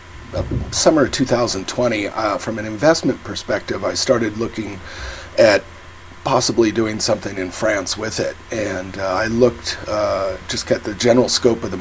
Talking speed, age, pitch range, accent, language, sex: 165 wpm, 40-59, 90-115 Hz, American, English, male